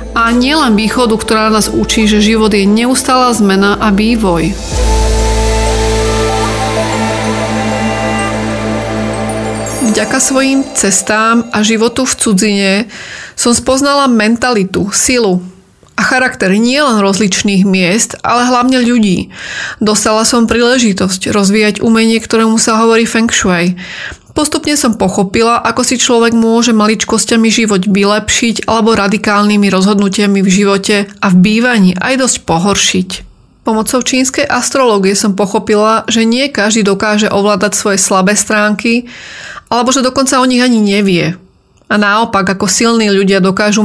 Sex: female